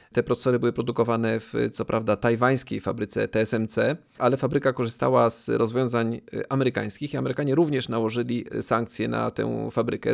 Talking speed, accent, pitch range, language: 140 wpm, native, 115-140 Hz, Polish